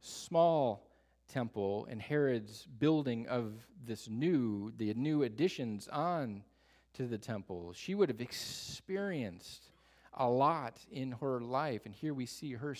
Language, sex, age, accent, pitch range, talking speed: English, male, 40-59, American, 100-130 Hz, 135 wpm